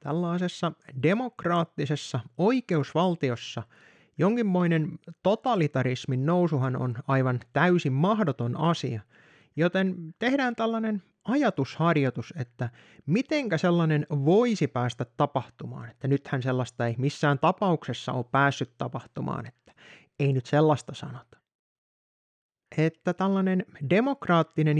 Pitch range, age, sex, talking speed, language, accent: 130-180 Hz, 30-49, male, 90 wpm, Finnish, native